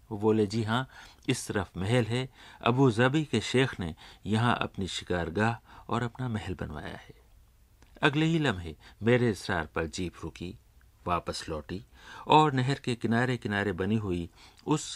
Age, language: 50-69, Hindi